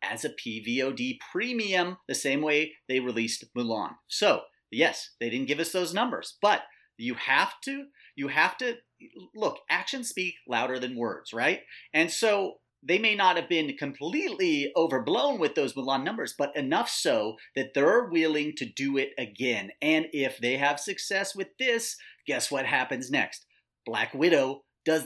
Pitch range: 135-210 Hz